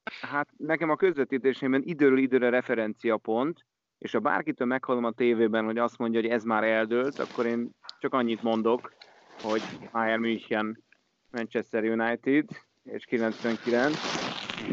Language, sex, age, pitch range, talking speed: Hungarian, male, 30-49, 110-125 Hz, 135 wpm